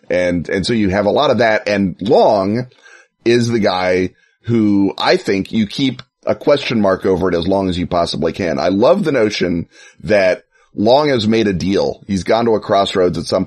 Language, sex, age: English, male, 30-49